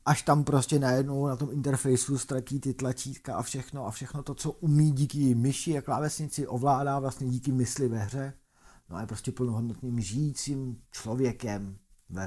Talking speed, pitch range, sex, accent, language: 170 wpm, 110-130 Hz, male, native, Czech